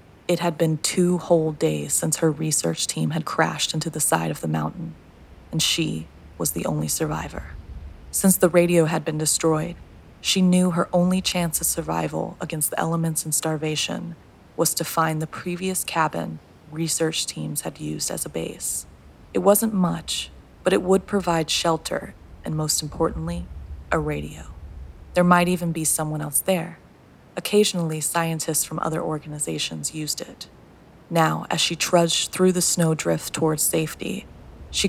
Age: 20-39